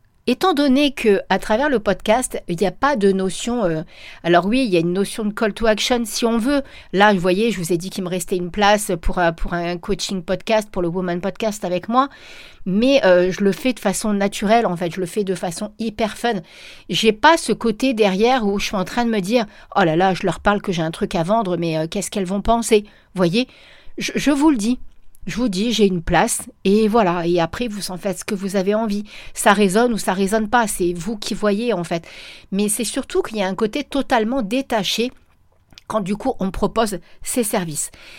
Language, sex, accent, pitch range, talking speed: French, female, French, 185-230 Hz, 240 wpm